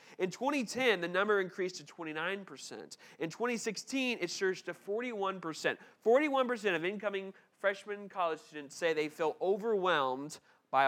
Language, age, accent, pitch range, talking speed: English, 30-49, American, 170-235 Hz, 125 wpm